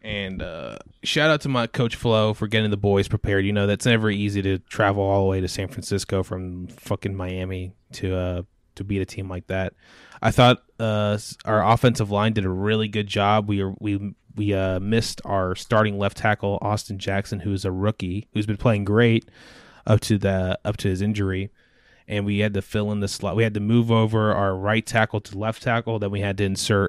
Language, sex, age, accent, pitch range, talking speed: English, male, 20-39, American, 95-110 Hz, 220 wpm